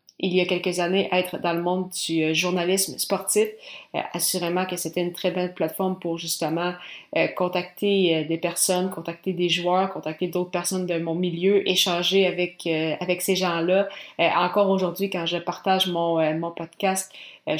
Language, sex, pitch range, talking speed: French, female, 175-195 Hz, 185 wpm